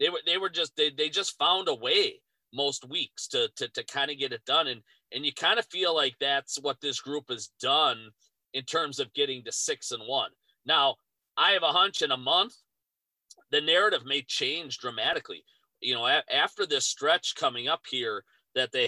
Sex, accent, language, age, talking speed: male, American, English, 40-59, 210 wpm